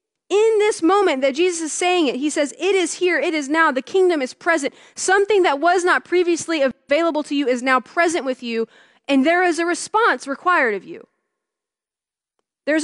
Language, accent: English, American